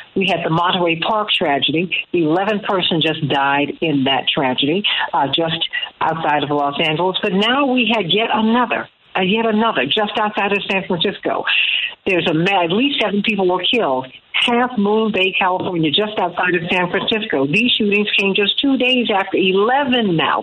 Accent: American